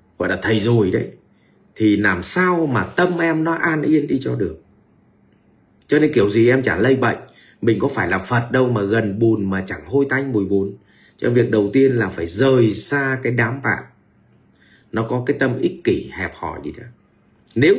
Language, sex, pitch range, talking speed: Vietnamese, male, 110-150 Hz, 210 wpm